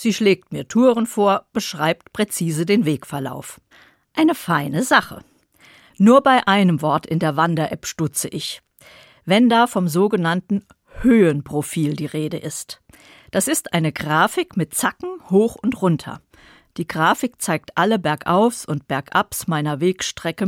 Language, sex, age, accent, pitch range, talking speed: German, female, 50-69, German, 155-220 Hz, 140 wpm